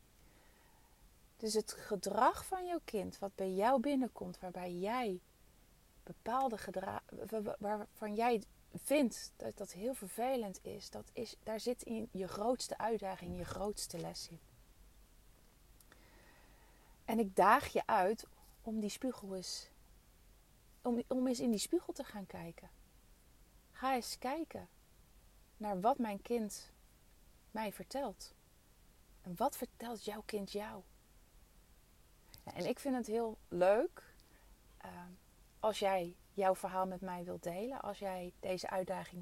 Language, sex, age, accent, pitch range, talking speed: Dutch, female, 30-49, Dutch, 185-235 Hz, 130 wpm